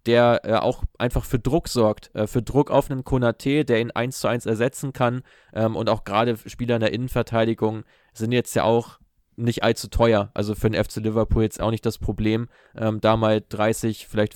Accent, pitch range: German, 110-125 Hz